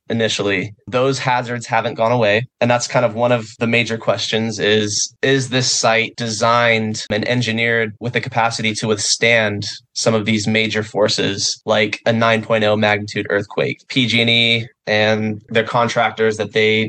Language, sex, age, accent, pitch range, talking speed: English, male, 20-39, American, 110-120 Hz, 155 wpm